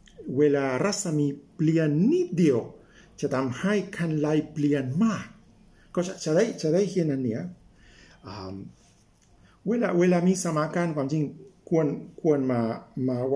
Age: 60-79